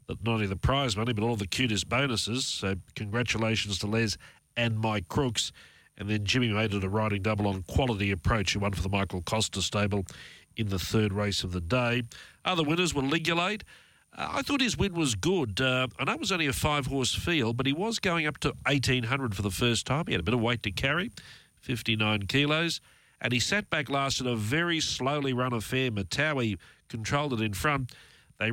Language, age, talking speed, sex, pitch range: English, 40-59, 210 wpm, male, 105-140 Hz